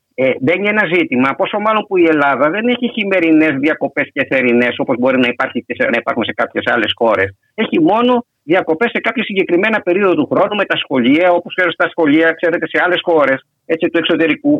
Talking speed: 195 wpm